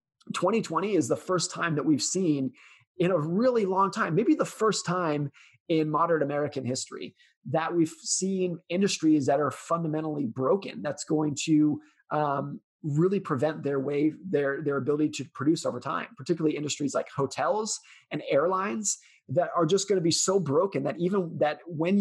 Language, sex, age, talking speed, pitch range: English, male, 30-49, 170 wpm, 150-190 Hz